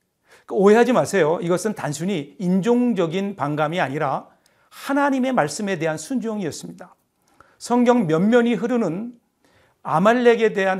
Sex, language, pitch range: male, Korean, 160-215 Hz